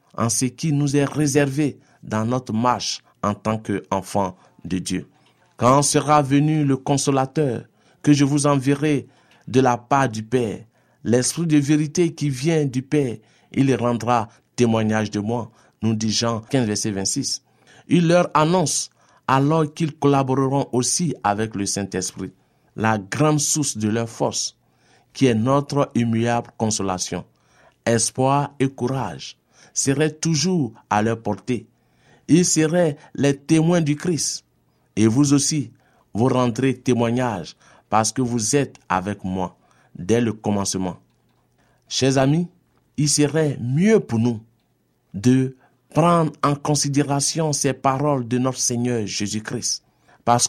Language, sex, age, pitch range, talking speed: French, male, 50-69, 110-145 Hz, 135 wpm